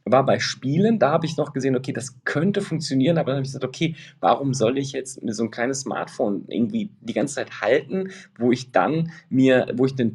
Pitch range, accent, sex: 110-155 Hz, German, male